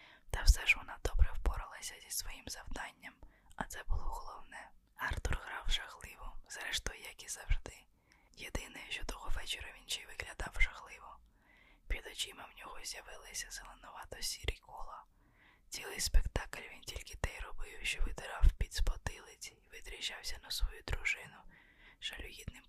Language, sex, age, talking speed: Ukrainian, female, 20-39, 140 wpm